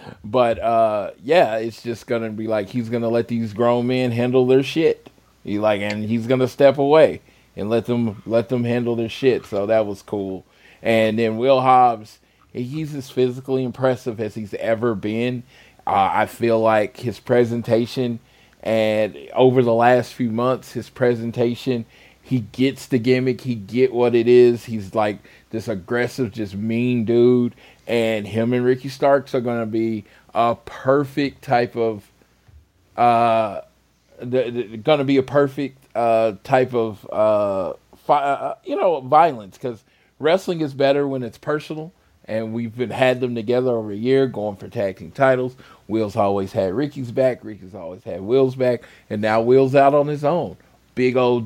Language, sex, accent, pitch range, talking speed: English, male, American, 110-130 Hz, 170 wpm